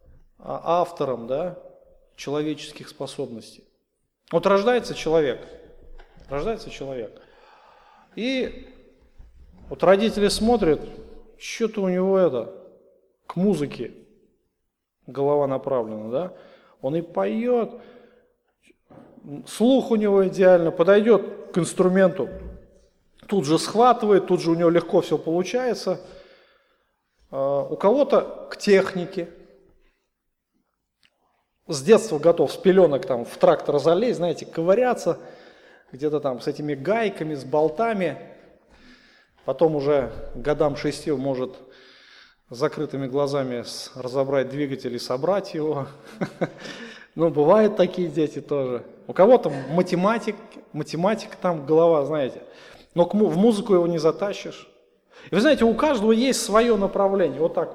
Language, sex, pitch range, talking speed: Russian, male, 150-225 Hz, 110 wpm